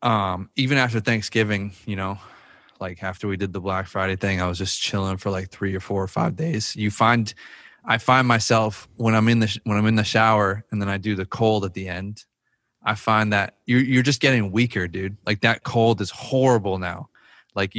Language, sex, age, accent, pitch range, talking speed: English, male, 20-39, American, 100-115 Hz, 220 wpm